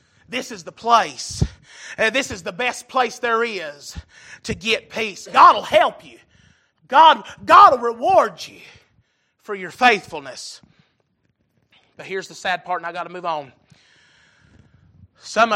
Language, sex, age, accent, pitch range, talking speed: English, male, 30-49, American, 185-255 Hz, 145 wpm